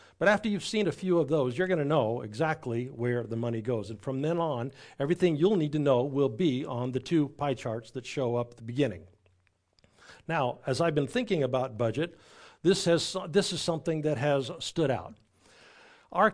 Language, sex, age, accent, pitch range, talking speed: English, male, 50-69, American, 120-160 Hz, 205 wpm